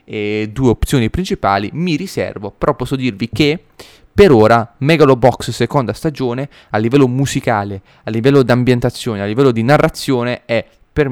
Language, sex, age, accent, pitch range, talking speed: Italian, male, 20-39, native, 105-130 Hz, 150 wpm